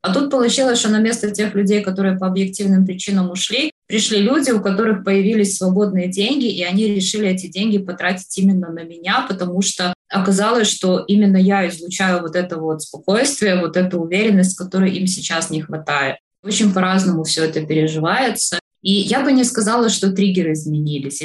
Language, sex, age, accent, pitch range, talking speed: Russian, female, 20-39, native, 175-205 Hz, 170 wpm